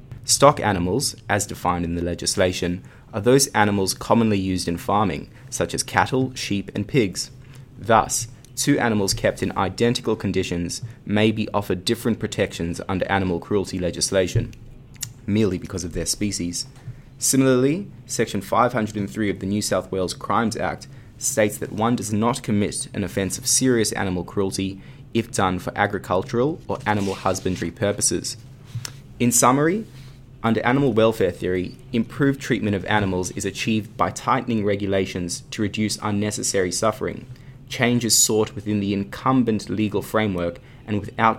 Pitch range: 95-125 Hz